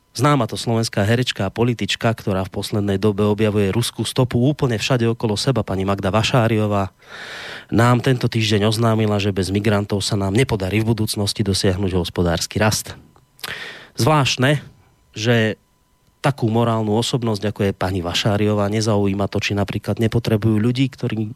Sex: male